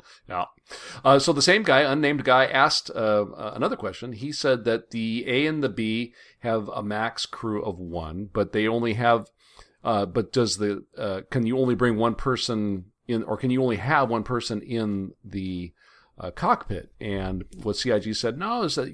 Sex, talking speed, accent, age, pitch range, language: male, 190 wpm, American, 40-59, 95-115 Hz, English